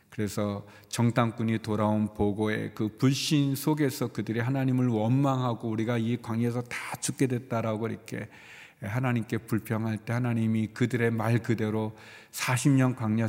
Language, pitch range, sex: Korean, 110-135 Hz, male